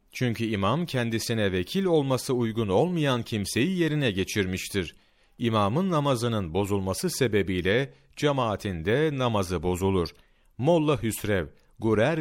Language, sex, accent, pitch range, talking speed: Turkish, male, native, 95-150 Hz, 105 wpm